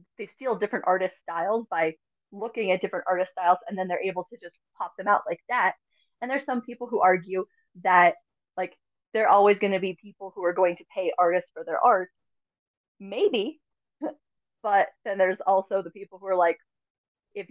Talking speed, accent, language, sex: 190 wpm, American, English, female